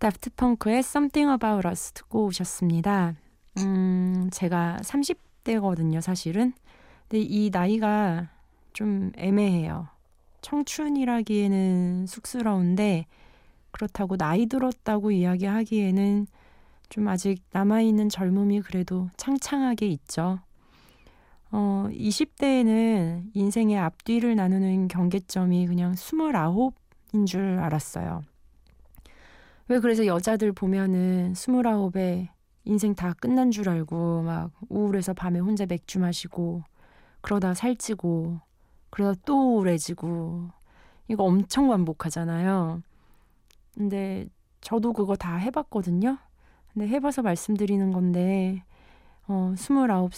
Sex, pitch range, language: female, 175-215 Hz, Korean